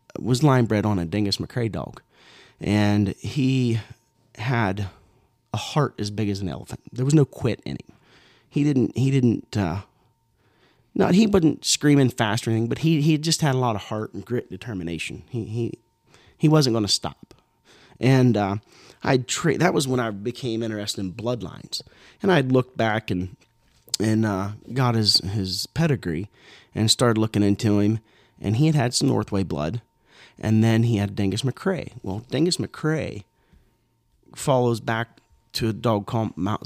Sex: male